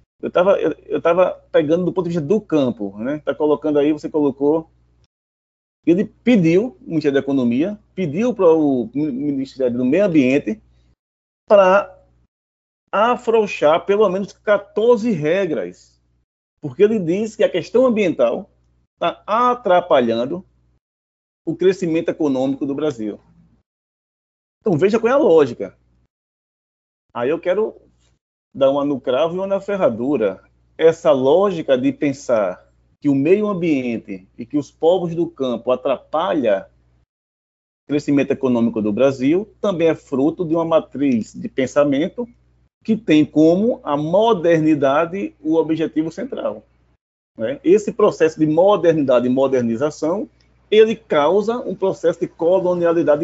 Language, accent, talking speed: Portuguese, Brazilian, 130 wpm